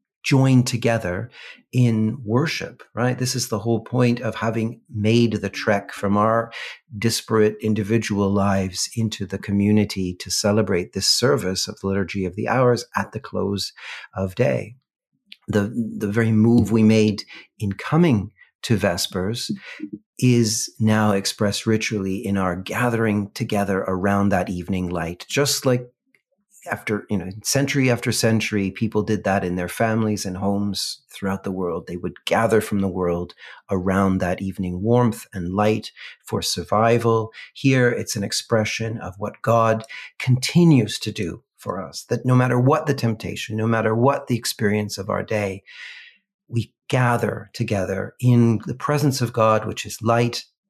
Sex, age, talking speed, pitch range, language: male, 40-59, 155 wpm, 100-120 Hz, English